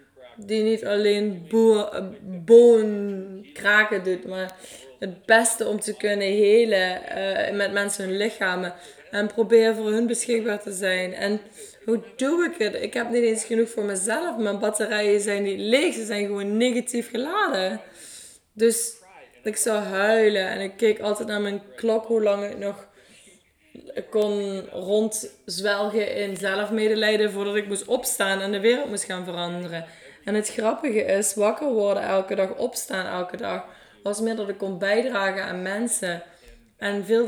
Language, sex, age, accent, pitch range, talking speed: English, female, 20-39, Dutch, 195-230 Hz, 155 wpm